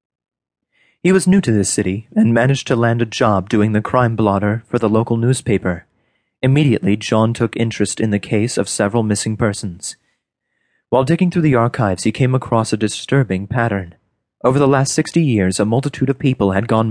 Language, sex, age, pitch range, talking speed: English, male, 30-49, 100-125 Hz, 190 wpm